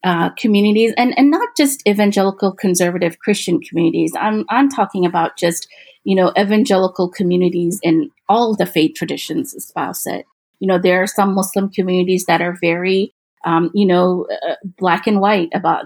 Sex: female